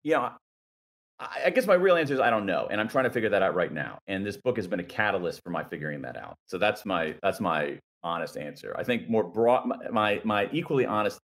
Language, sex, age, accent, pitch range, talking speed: English, male, 40-59, American, 80-105 Hz, 250 wpm